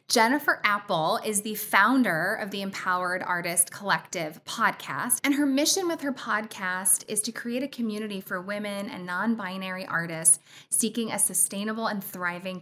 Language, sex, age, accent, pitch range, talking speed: English, female, 10-29, American, 185-235 Hz, 150 wpm